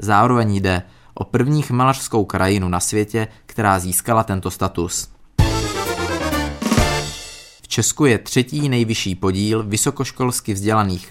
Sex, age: male, 20-39